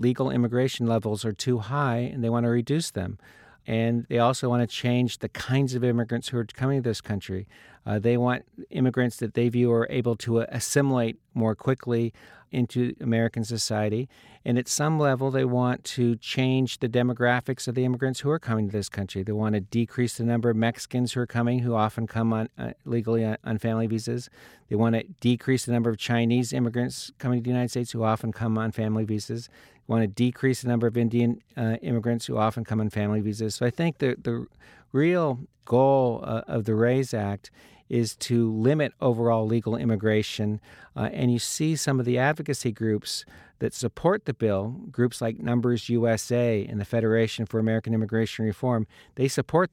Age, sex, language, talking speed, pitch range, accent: 50-69, male, English, 200 wpm, 110-125 Hz, American